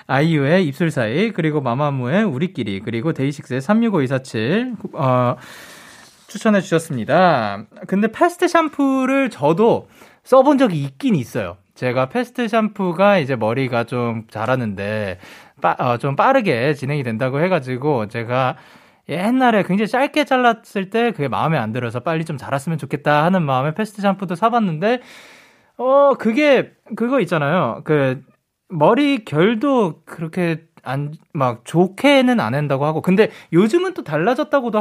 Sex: male